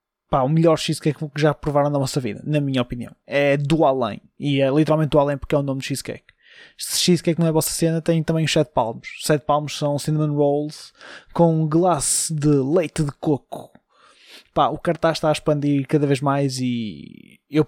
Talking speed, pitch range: 205 wpm, 140-165 Hz